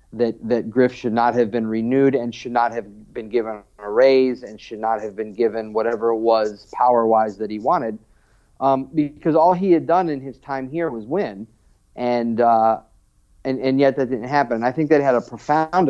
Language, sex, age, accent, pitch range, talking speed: English, male, 40-59, American, 110-140 Hz, 210 wpm